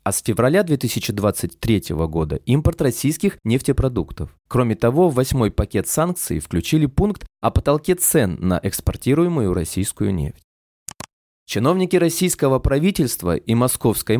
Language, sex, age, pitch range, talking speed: Russian, male, 20-39, 100-150 Hz, 120 wpm